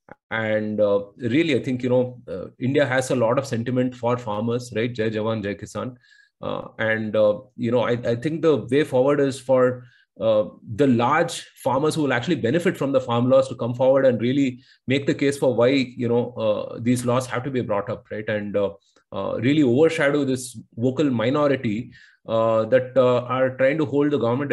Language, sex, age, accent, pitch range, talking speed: English, male, 30-49, Indian, 120-145 Hz, 205 wpm